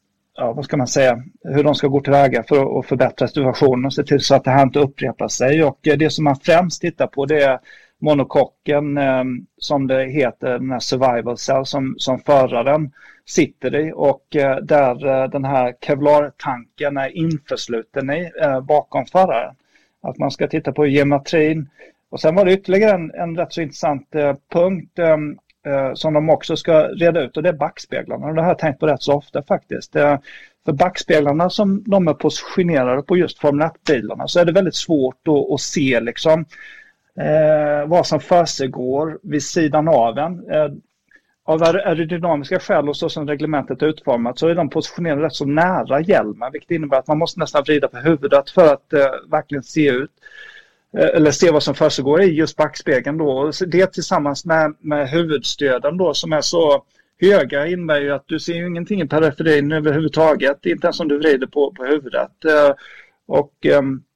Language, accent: Swedish, native